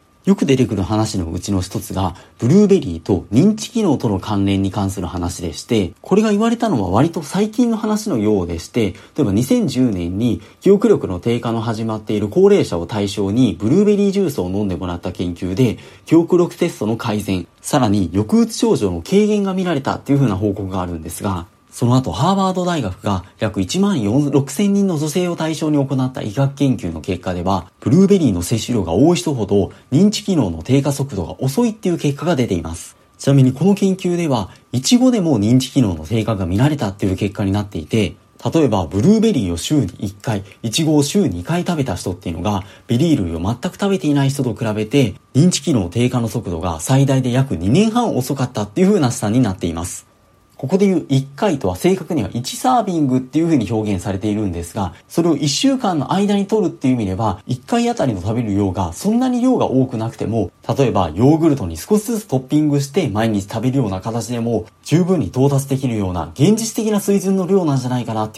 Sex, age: male, 40-59